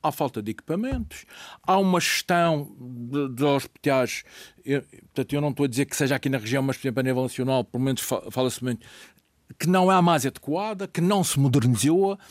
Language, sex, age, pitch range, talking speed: Portuguese, male, 50-69, 135-200 Hz, 195 wpm